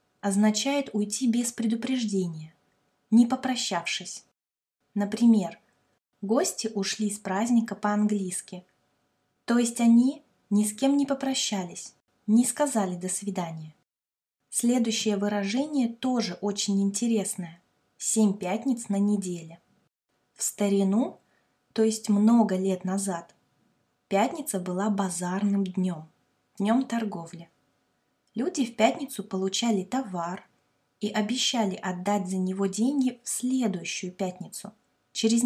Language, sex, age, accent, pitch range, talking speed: Russian, female, 20-39, native, 190-235 Hz, 105 wpm